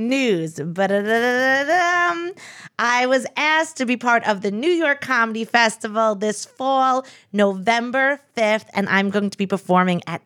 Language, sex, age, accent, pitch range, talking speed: English, female, 30-49, American, 175-240 Hz, 145 wpm